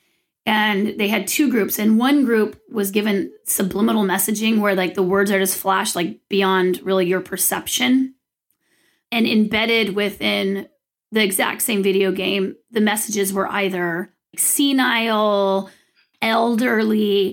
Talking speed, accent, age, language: 130 wpm, American, 30-49, English